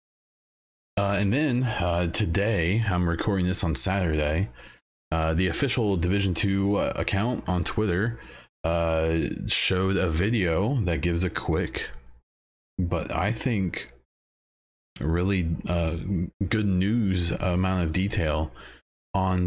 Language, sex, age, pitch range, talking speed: English, male, 20-39, 80-100 Hz, 115 wpm